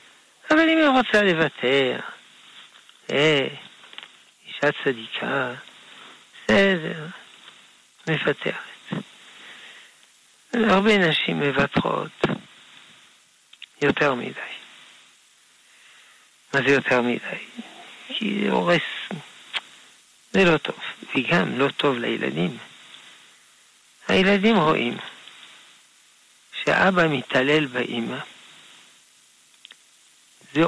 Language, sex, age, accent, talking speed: Hebrew, male, 60-79, Italian, 70 wpm